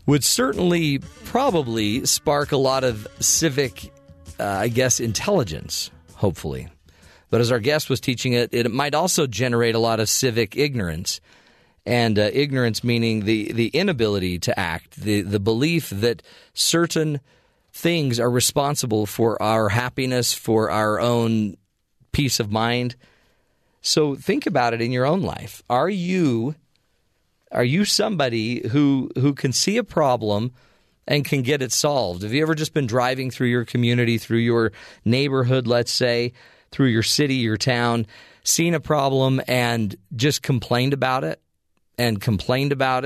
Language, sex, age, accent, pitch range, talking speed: English, male, 40-59, American, 105-140 Hz, 150 wpm